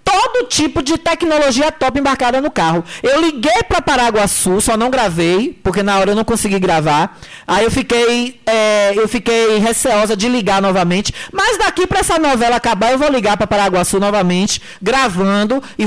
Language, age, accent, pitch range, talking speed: Portuguese, 20-39, Brazilian, 210-280 Hz, 175 wpm